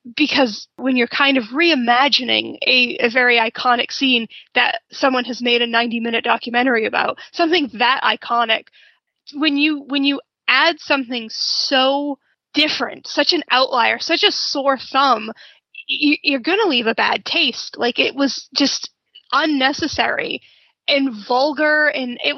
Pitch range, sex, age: 245-320 Hz, female, 20-39